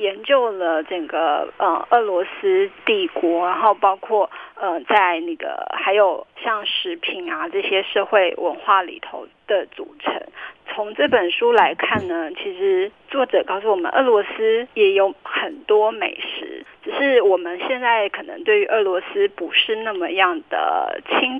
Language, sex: Chinese, female